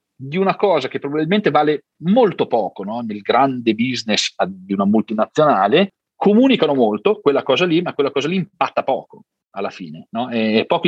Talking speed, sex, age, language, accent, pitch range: 160 wpm, male, 40-59, Italian, native, 120-180 Hz